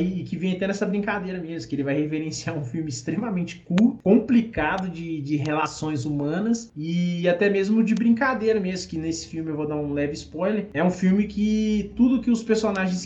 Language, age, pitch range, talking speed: Portuguese, 20-39, 140-195 Hz, 200 wpm